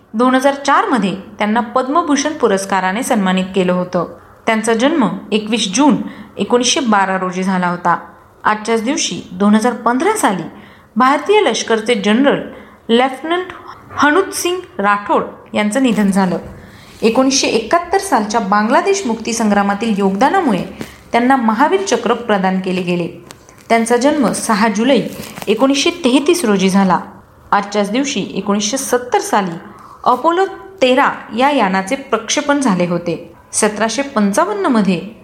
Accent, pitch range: native, 200-270 Hz